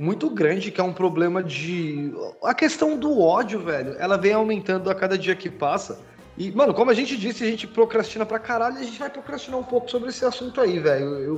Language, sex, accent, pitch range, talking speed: Portuguese, male, Brazilian, 180-250 Hz, 225 wpm